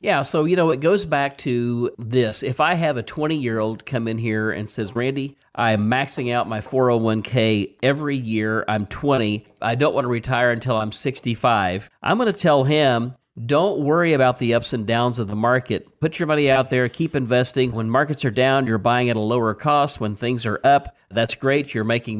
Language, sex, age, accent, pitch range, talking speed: English, male, 50-69, American, 110-140 Hz, 210 wpm